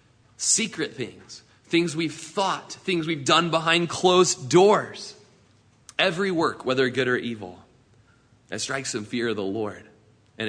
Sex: male